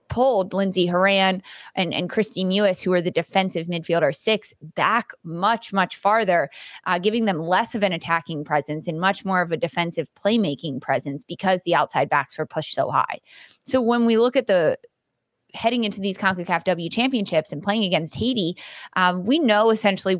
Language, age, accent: English, 20-39, American